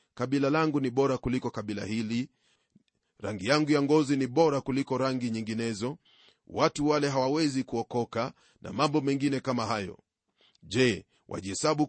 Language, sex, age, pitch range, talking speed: Swahili, male, 40-59, 120-140 Hz, 135 wpm